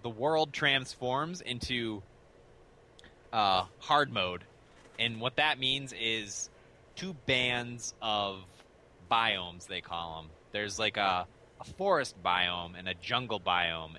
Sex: male